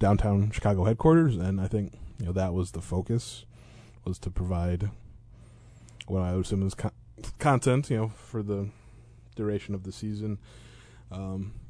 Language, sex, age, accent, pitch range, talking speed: English, male, 20-39, American, 90-115 Hz, 155 wpm